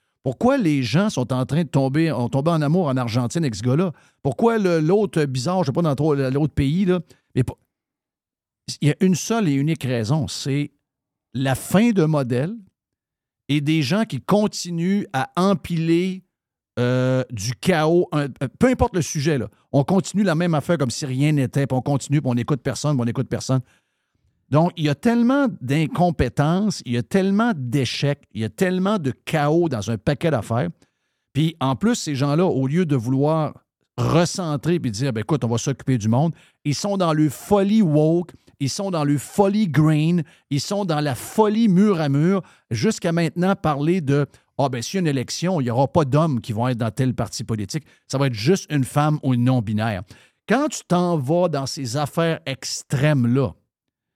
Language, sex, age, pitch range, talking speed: French, male, 50-69, 130-175 Hz, 205 wpm